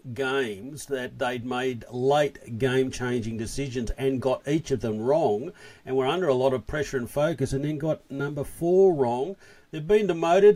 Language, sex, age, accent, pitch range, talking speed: English, male, 50-69, Australian, 135-175 Hz, 175 wpm